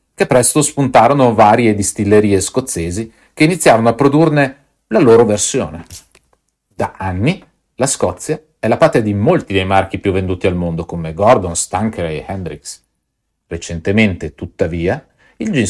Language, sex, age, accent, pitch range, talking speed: Italian, male, 40-59, native, 95-120 Hz, 140 wpm